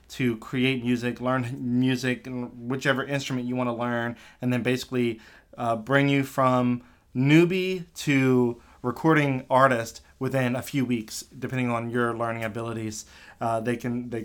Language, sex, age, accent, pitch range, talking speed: English, male, 20-39, American, 115-130 Hz, 150 wpm